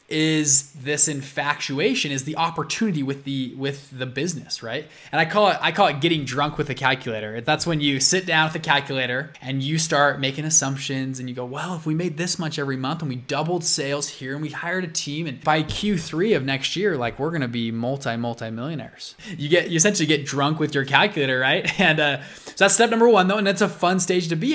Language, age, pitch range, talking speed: English, 20-39, 140-185 Hz, 230 wpm